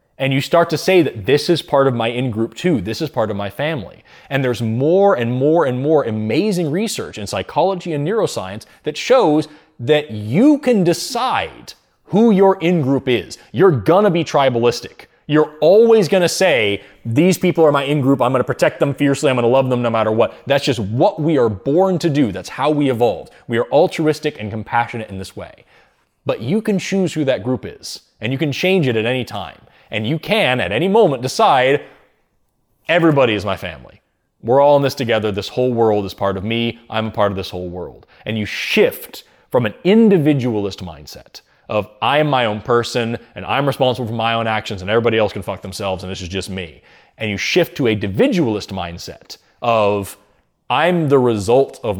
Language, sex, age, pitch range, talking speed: English, male, 20-39, 105-155 Hz, 210 wpm